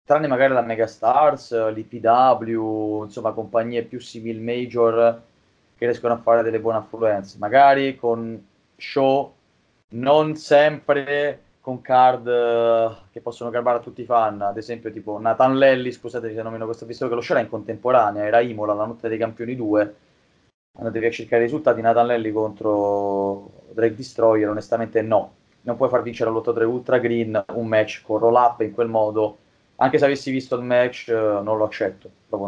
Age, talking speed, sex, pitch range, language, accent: 20-39, 175 wpm, male, 110-130 Hz, Italian, native